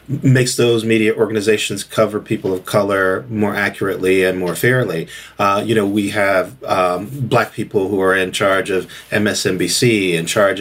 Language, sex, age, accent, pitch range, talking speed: English, male, 40-59, American, 95-120 Hz, 165 wpm